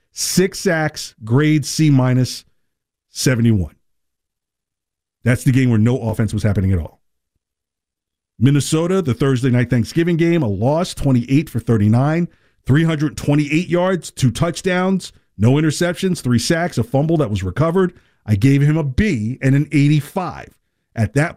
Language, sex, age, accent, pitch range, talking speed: English, male, 50-69, American, 120-165 Hz, 140 wpm